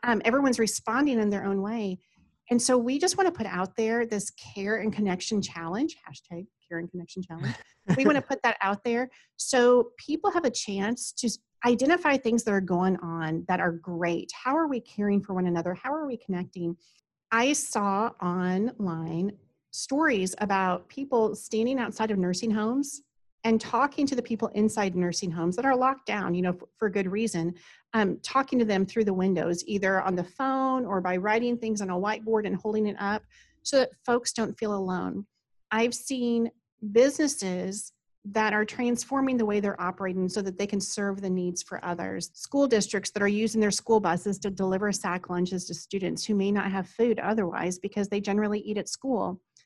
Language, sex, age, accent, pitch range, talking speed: English, female, 40-59, American, 185-240 Hz, 195 wpm